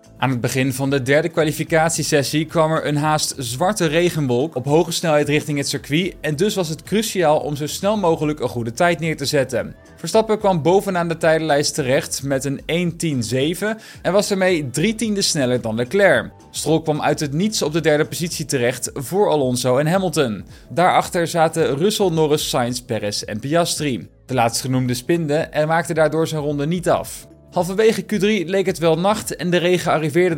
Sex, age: male, 20-39